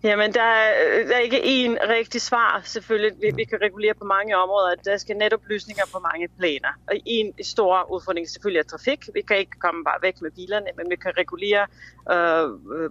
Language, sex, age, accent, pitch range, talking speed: Danish, female, 30-49, native, 175-220 Hz, 200 wpm